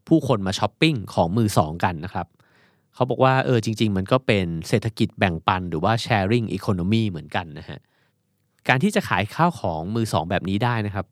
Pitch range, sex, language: 95-130 Hz, male, Thai